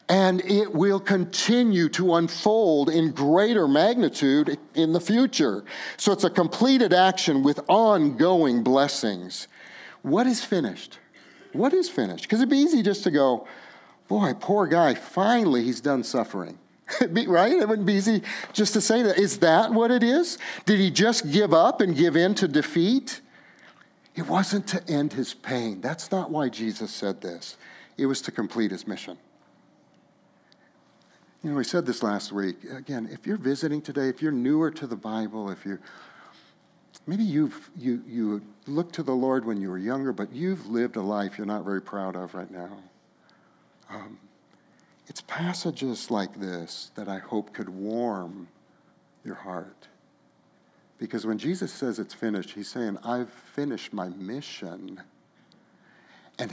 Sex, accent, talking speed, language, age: male, American, 160 wpm, English, 50-69